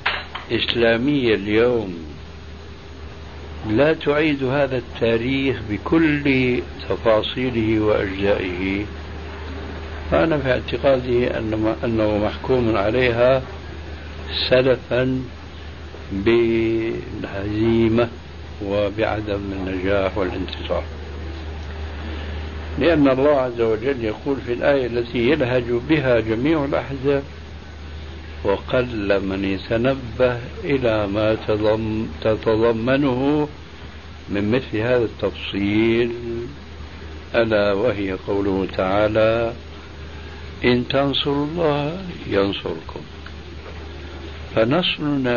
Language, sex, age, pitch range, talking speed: Arabic, male, 60-79, 80-120 Hz, 65 wpm